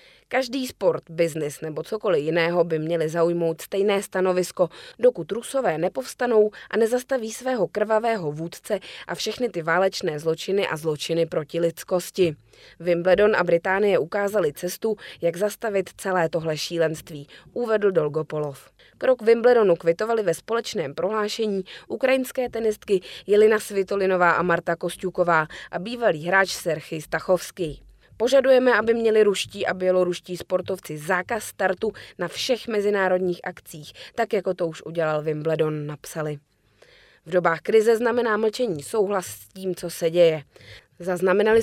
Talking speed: 130 wpm